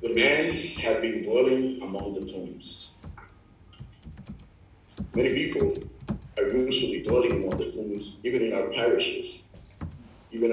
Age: 50-69